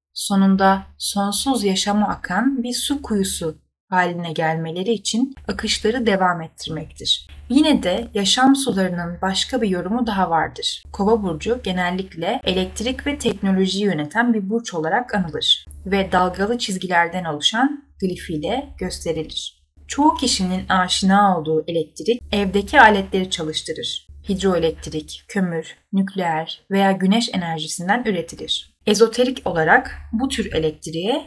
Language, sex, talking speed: Turkish, female, 115 wpm